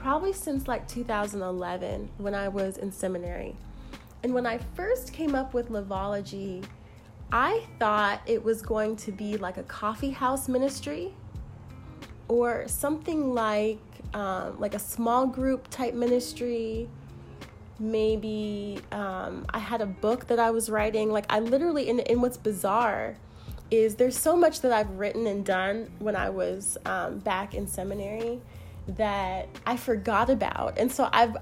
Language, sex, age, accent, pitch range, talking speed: English, female, 20-39, American, 205-260 Hz, 150 wpm